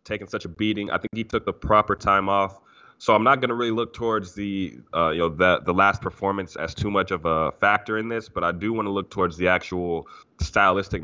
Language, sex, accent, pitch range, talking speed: English, male, American, 90-105 Hz, 245 wpm